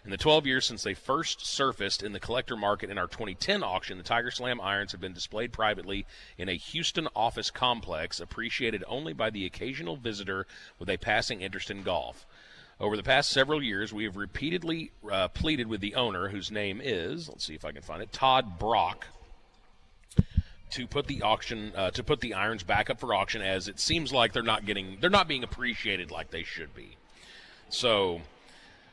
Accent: American